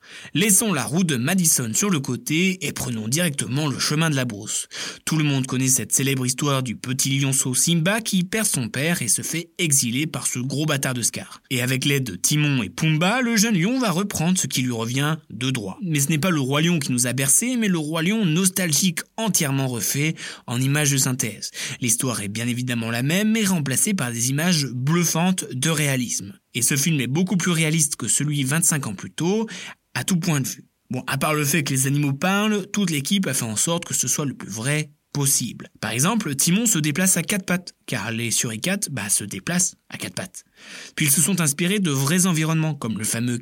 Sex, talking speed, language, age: male, 225 wpm, French, 20-39